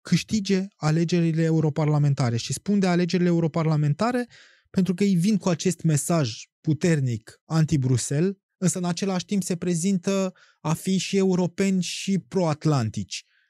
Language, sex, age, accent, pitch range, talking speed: Romanian, male, 20-39, native, 145-170 Hz, 130 wpm